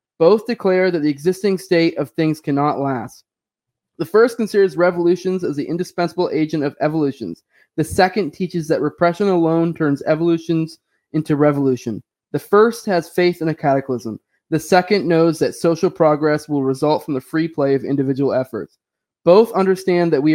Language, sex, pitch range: English, male, 150-180 Hz